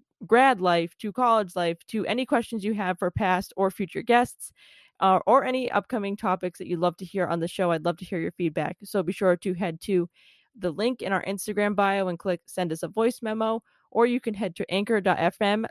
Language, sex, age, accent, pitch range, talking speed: English, female, 20-39, American, 180-215 Hz, 225 wpm